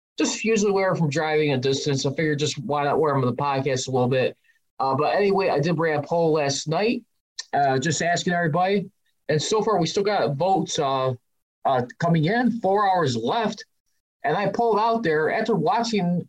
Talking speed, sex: 205 wpm, male